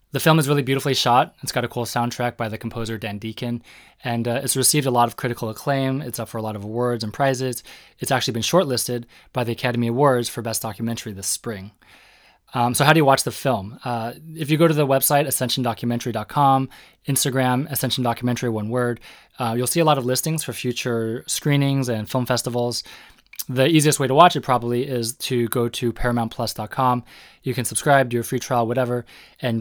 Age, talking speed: 20-39, 205 wpm